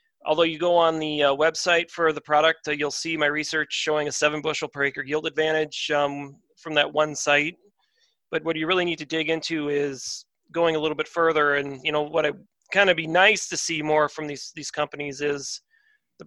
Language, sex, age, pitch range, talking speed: English, male, 30-49, 140-160 Hz, 220 wpm